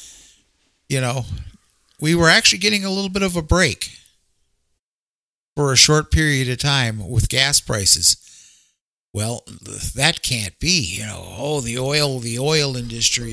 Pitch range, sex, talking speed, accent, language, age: 110-150 Hz, male, 150 wpm, American, English, 50-69